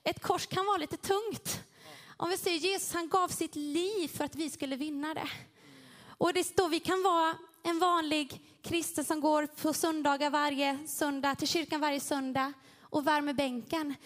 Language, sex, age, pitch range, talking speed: Swedish, female, 20-39, 280-345 Hz, 180 wpm